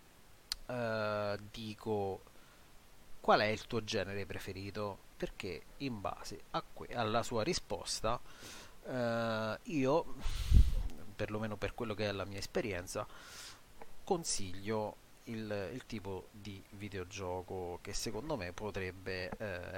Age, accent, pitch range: 30-49, native, 95-115 Hz